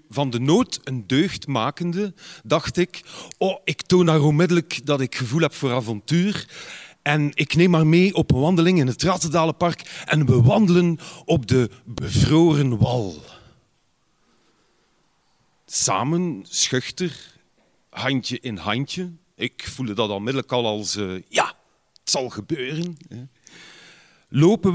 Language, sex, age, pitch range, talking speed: Dutch, male, 40-59, 120-165 Hz, 130 wpm